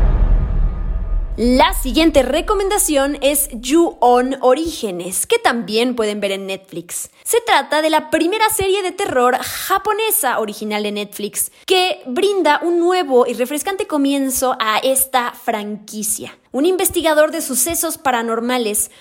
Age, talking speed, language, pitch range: 20-39, 125 wpm, Spanish, 225-330 Hz